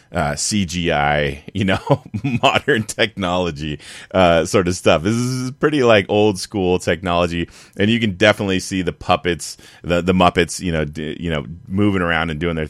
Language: English